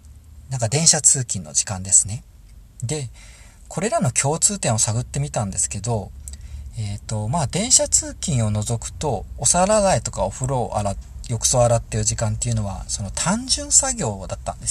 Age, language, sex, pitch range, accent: 40-59, Japanese, male, 110-165 Hz, native